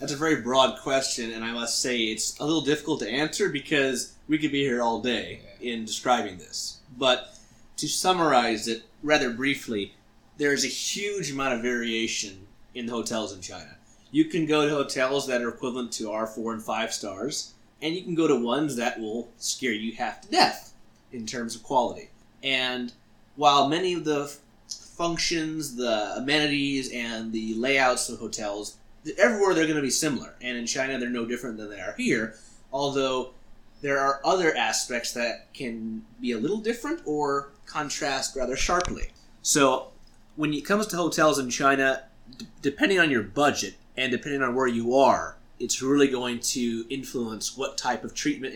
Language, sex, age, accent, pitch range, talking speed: English, male, 30-49, American, 115-145 Hz, 180 wpm